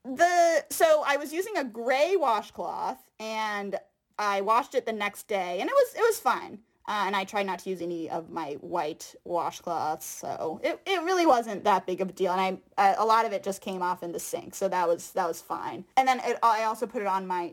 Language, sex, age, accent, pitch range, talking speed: English, female, 20-39, American, 190-235 Hz, 245 wpm